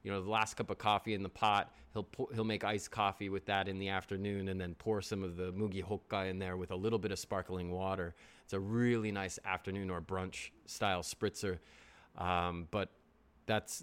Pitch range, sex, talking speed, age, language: 95-115 Hz, male, 215 wpm, 30-49, English